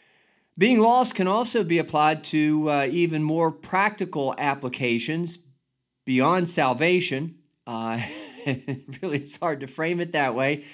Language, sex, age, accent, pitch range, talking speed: English, male, 50-69, American, 130-175 Hz, 130 wpm